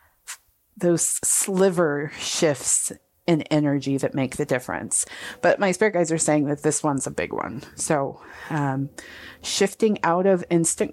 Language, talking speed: English, 150 wpm